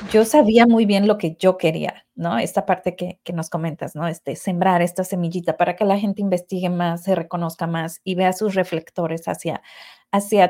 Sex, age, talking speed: female, 30-49, 200 wpm